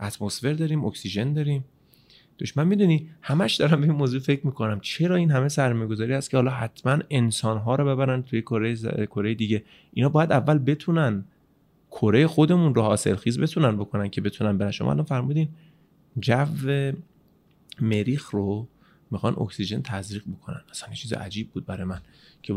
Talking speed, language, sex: 160 wpm, Persian, male